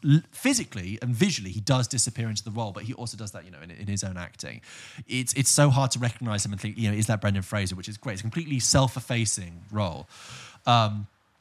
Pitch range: 105-125 Hz